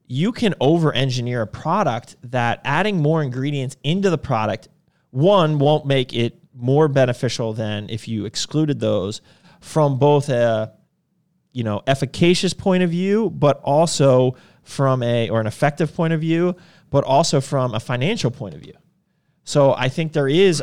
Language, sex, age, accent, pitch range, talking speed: English, male, 30-49, American, 115-160 Hz, 160 wpm